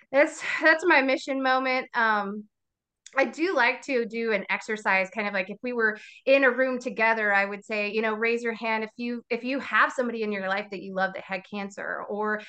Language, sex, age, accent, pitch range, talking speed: English, female, 20-39, American, 200-250 Hz, 225 wpm